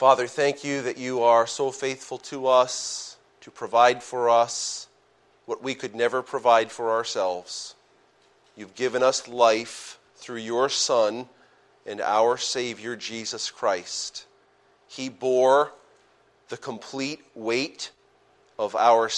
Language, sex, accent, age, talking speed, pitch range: English, male, American, 40-59, 125 wpm, 115-155 Hz